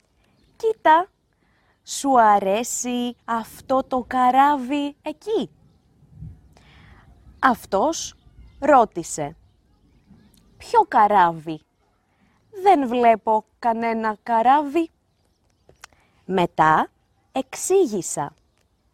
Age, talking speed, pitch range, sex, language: 20-39, 55 wpm, 190-285 Hz, female, Greek